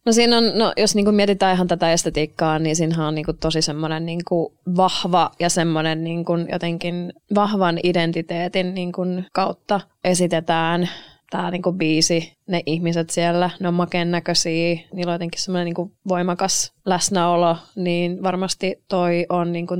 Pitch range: 170-195 Hz